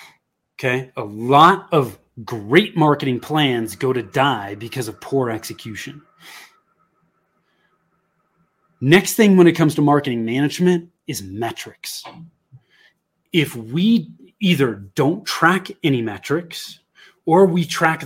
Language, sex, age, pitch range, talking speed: English, male, 30-49, 125-170 Hz, 110 wpm